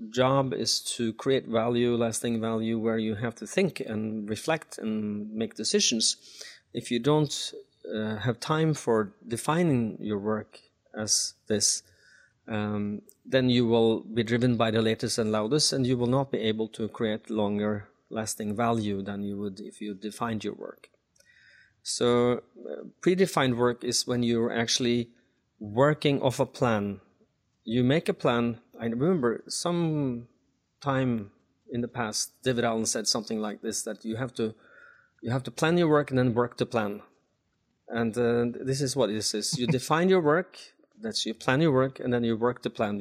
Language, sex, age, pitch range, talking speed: English, male, 30-49, 110-130 Hz, 175 wpm